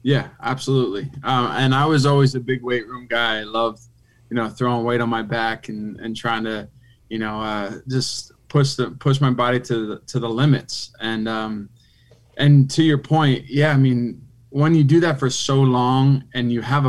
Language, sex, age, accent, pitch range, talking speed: English, male, 20-39, American, 115-135 Hz, 205 wpm